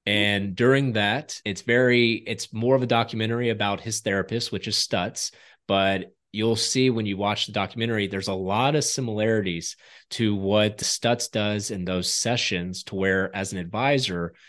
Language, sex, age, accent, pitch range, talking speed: English, male, 30-49, American, 95-115 Hz, 170 wpm